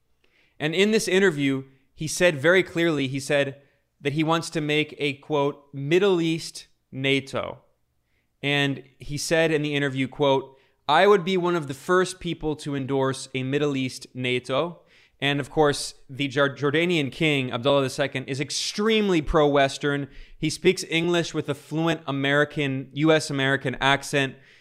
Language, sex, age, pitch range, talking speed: English, male, 20-39, 135-160 Hz, 150 wpm